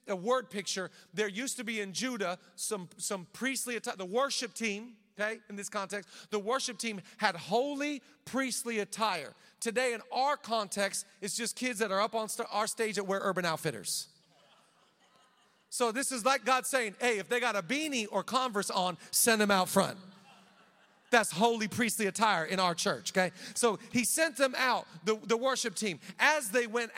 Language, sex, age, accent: English, male, 40-59, American